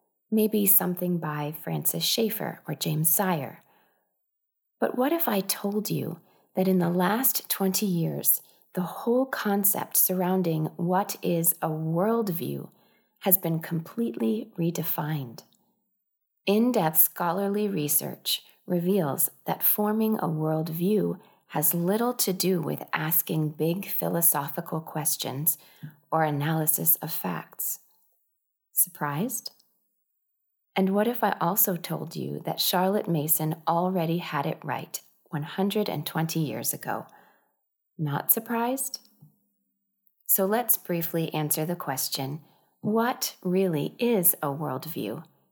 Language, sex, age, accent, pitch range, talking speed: English, female, 30-49, American, 155-200 Hz, 110 wpm